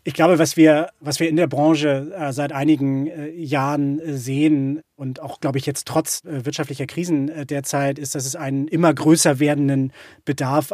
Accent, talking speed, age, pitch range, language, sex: German, 170 wpm, 30-49, 140-160 Hz, German, male